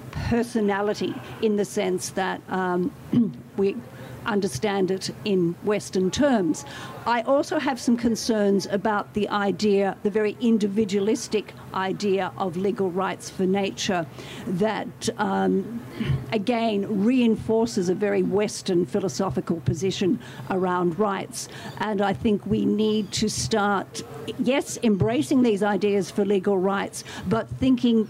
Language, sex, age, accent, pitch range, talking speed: English, female, 50-69, Australian, 190-225 Hz, 120 wpm